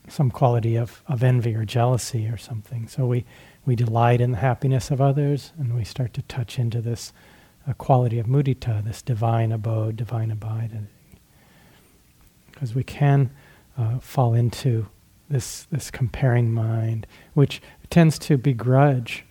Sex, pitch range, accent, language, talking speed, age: male, 115-140 Hz, American, English, 150 wpm, 40-59